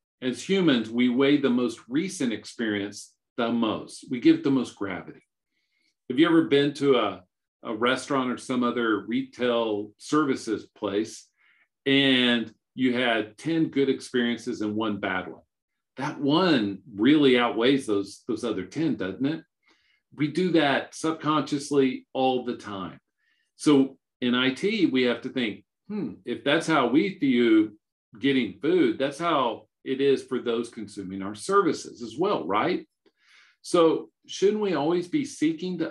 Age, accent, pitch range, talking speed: 50-69, American, 115-160 Hz, 150 wpm